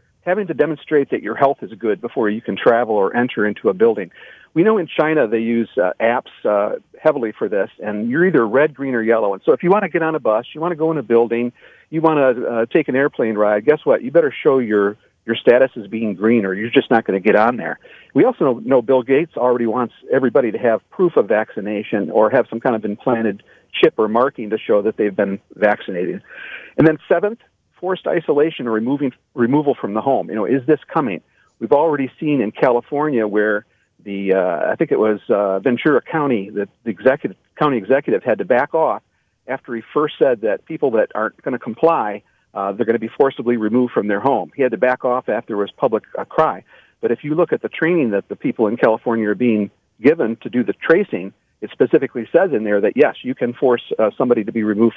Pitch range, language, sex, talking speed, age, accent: 110-155 Hz, English, male, 230 wpm, 50-69, American